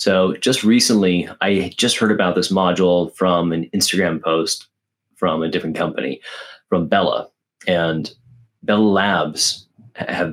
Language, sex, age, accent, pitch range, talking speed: English, male, 30-49, American, 80-95 Hz, 135 wpm